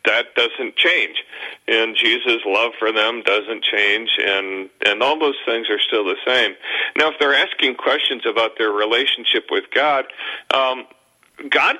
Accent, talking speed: American, 160 wpm